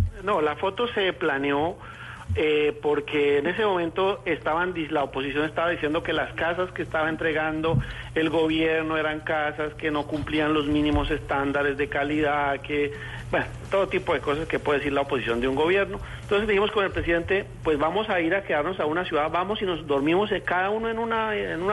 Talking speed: 195 wpm